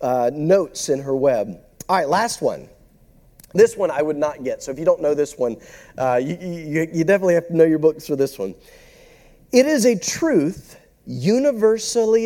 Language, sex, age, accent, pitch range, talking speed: English, male, 40-59, American, 175-240 Hz, 195 wpm